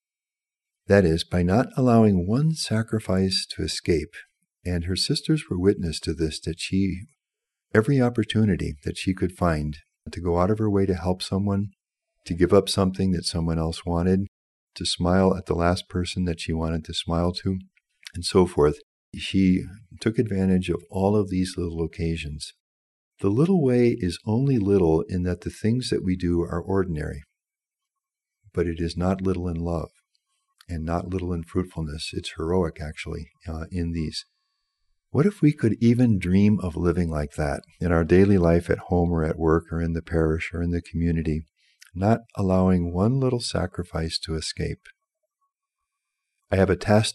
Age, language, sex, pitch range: 50-69, English, male, 85-105 Hz